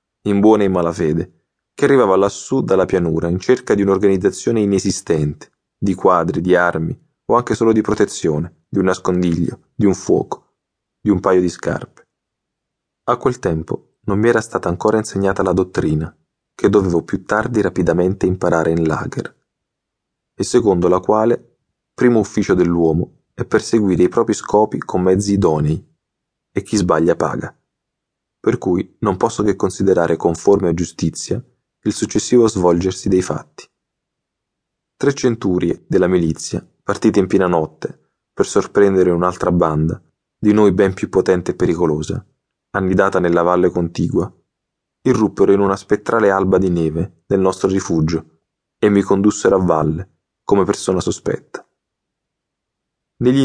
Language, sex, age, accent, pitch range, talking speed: Italian, male, 30-49, native, 85-105 Hz, 145 wpm